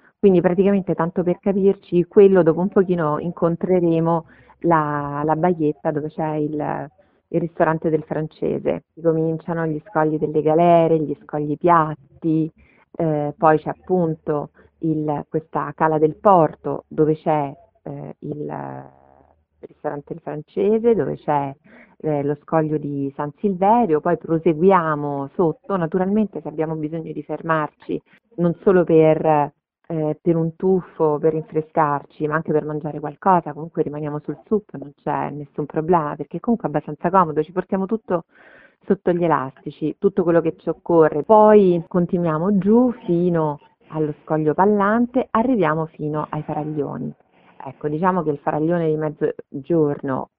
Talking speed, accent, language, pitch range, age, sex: 135 wpm, native, Italian, 150-180 Hz, 40-59, female